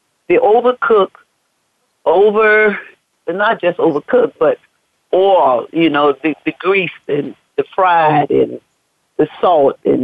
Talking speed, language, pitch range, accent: 120 wpm, English, 155-195 Hz, American